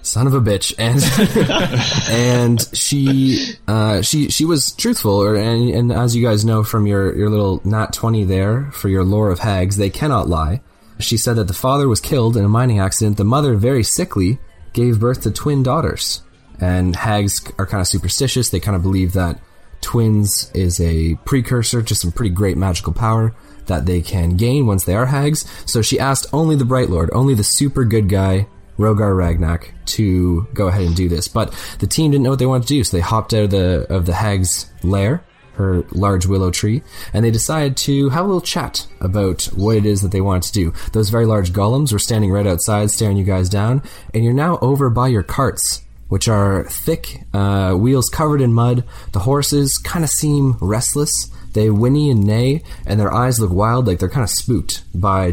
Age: 20-39